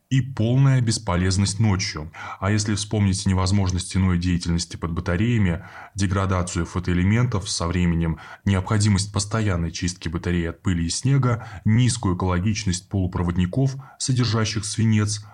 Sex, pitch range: male, 90-110 Hz